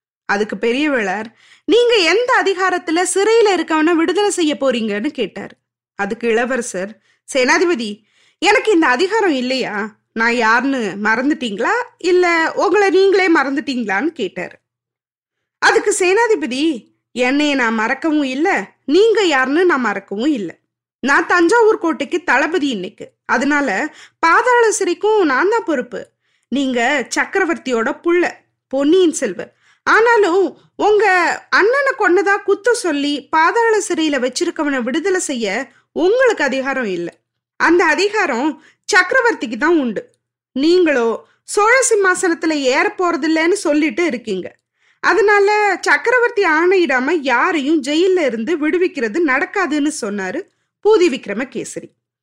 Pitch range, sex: 260-380 Hz, female